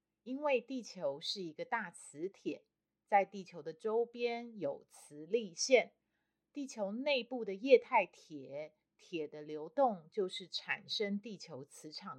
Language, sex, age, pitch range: Chinese, female, 30-49, 165-245 Hz